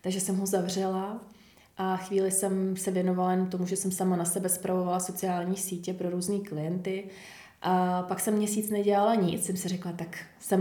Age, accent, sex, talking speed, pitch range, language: 20-39, native, female, 185 wpm, 185-205 Hz, Czech